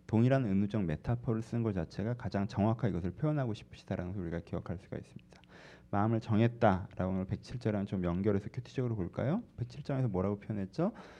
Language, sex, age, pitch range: Korean, male, 40-59, 95-125 Hz